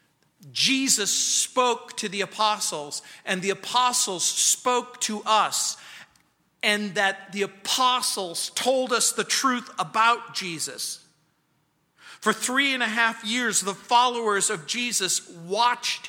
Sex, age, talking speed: male, 50-69, 120 wpm